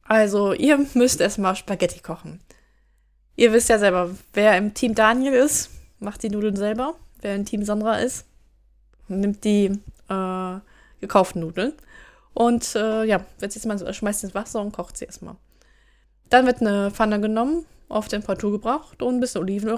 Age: 20-39